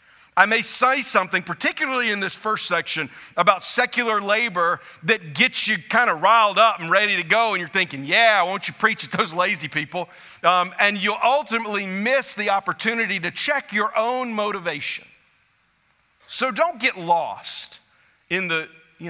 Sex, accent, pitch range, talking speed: male, American, 155-210 Hz, 165 wpm